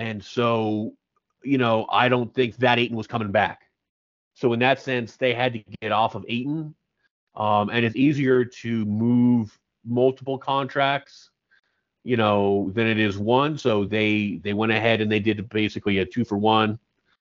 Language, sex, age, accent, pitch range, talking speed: English, male, 30-49, American, 110-135 Hz, 175 wpm